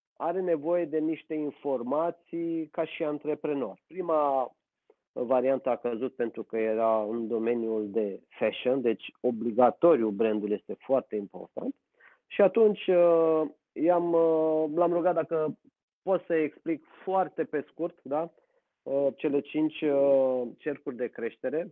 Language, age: Romanian, 30-49